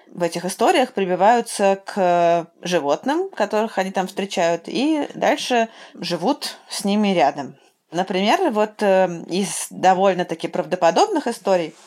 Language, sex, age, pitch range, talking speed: Russian, female, 20-39, 175-215 Hz, 110 wpm